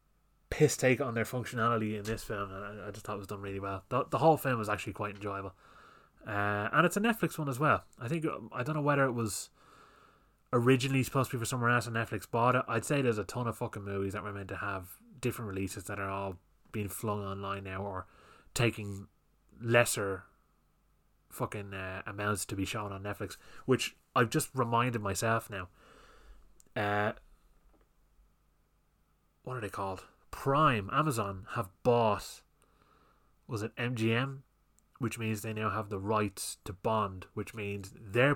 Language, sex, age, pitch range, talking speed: English, male, 20-39, 100-120 Hz, 180 wpm